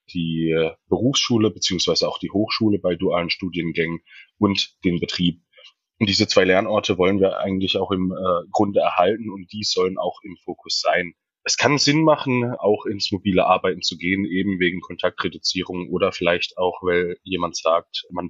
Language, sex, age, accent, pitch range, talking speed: German, male, 20-39, German, 90-105 Hz, 165 wpm